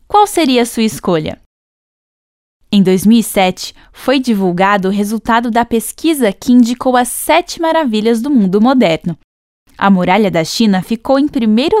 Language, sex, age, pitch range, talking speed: Portuguese, female, 10-29, 195-275 Hz, 140 wpm